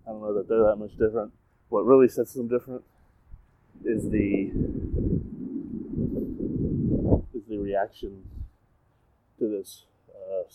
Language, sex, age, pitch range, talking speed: English, male, 20-39, 100-135 Hz, 120 wpm